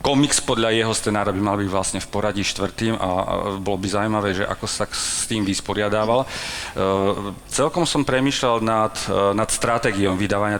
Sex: male